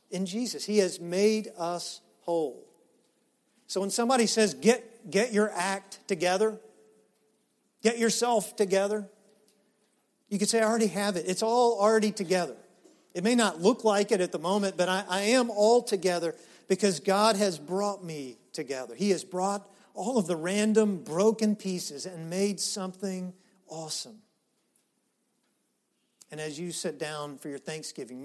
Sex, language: male, English